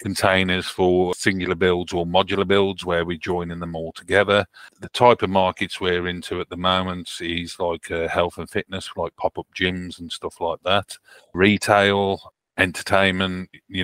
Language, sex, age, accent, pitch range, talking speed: English, male, 30-49, British, 85-95 Hz, 165 wpm